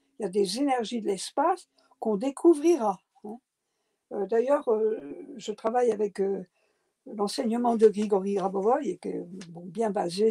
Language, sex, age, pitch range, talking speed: French, female, 60-79, 215-300 Hz, 120 wpm